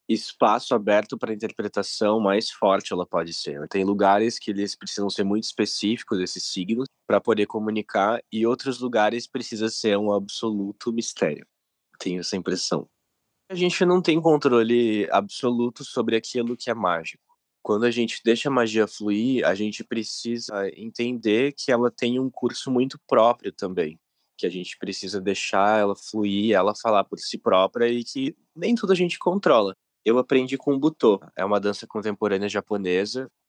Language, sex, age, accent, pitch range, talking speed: Portuguese, male, 20-39, Brazilian, 100-125 Hz, 165 wpm